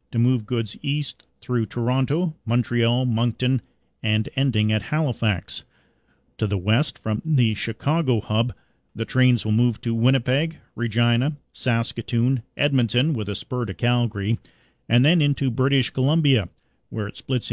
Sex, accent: male, American